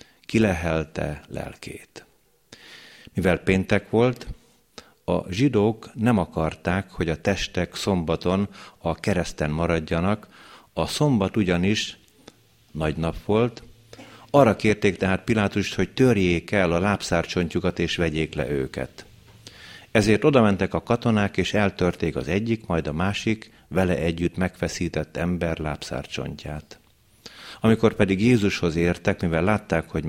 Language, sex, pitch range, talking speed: Hungarian, male, 85-105 Hz, 120 wpm